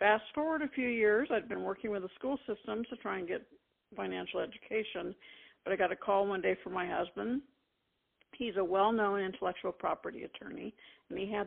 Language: English